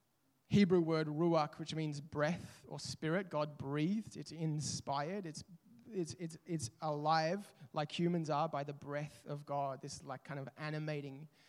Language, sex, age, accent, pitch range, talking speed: English, male, 20-39, Australian, 145-170 Hz, 155 wpm